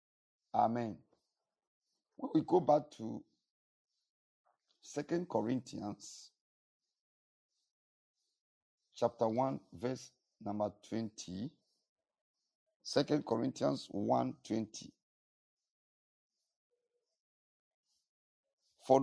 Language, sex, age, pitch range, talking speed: English, male, 50-69, 110-150 Hz, 55 wpm